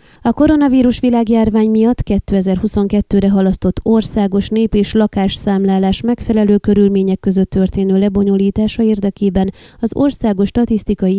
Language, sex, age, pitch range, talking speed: Hungarian, female, 20-39, 185-220 Hz, 100 wpm